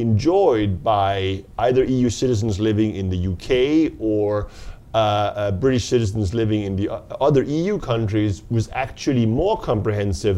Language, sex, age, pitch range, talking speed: English, male, 30-49, 105-130 Hz, 140 wpm